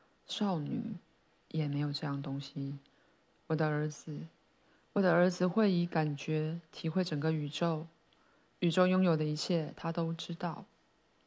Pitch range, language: 160-190 Hz, Chinese